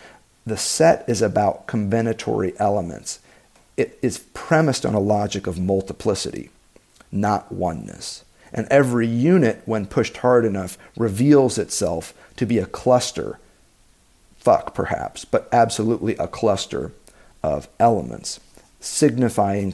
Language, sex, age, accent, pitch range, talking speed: English, male, 50-69, American, 100-125 Hz, 115 wpm